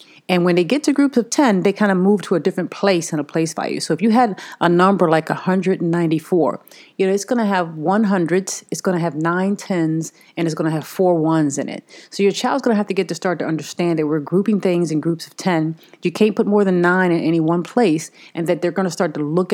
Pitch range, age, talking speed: 160-195 Hz, 30-49, 270 wpm